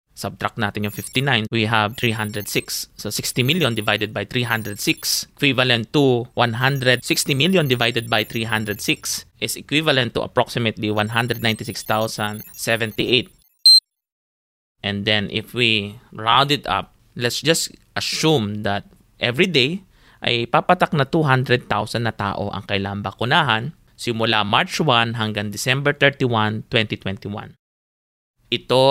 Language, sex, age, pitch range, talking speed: English, male, 20-39, 105-135 Hz, 115 wpm